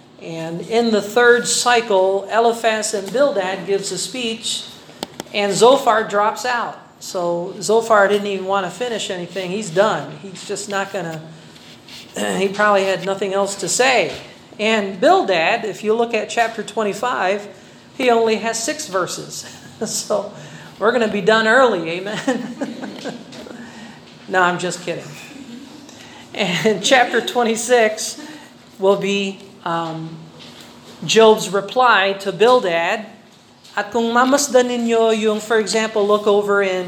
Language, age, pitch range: Filipino, 40-59, 190-235 Hz